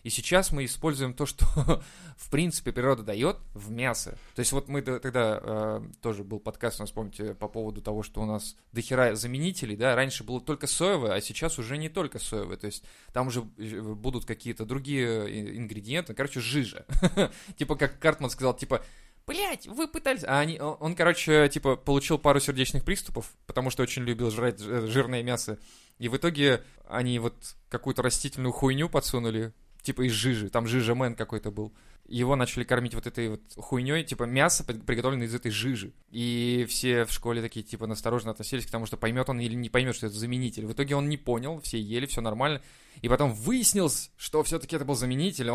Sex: male